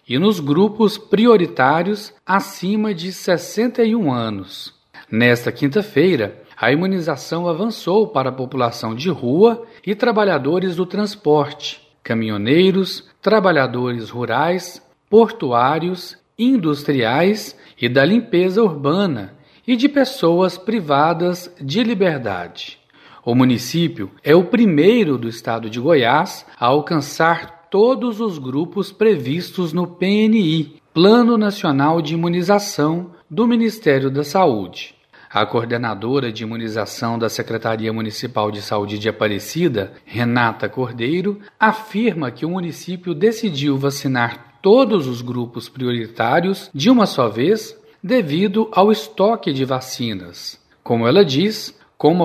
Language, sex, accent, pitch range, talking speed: Portuguese, male, Brazilian, 125-205 Hz, 115 wpm